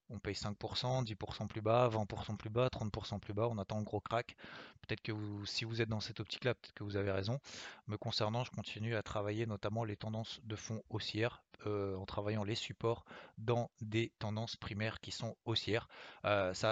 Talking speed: 210 wpm